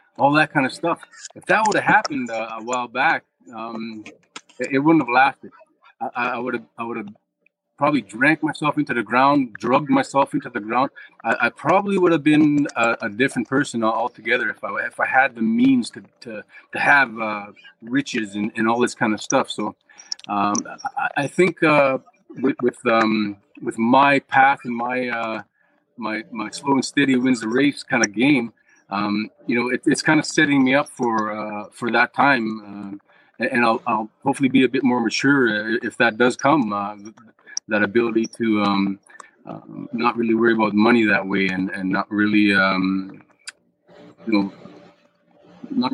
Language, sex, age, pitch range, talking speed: English, male, 30-49, 105-135 Hz, 190 wpm